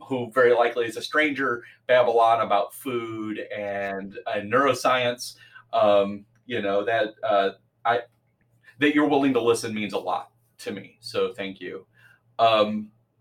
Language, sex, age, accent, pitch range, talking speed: English, male, 30-49, American, 105-120 Hz, 145 wpm